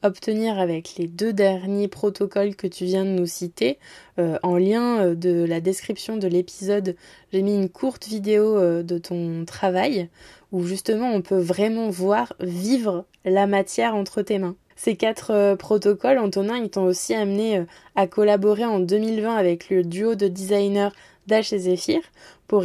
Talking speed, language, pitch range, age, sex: 160 wpm, French, 185-215 Hz, 20-39, female